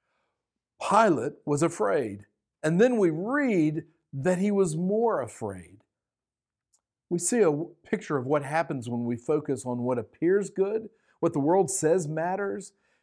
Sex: male